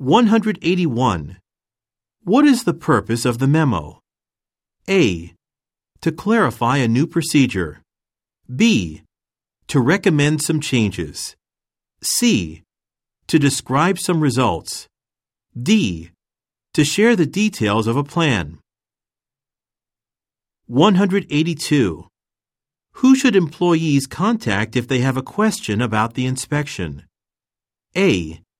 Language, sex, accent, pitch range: Japanese, male, American, 105-165 Hz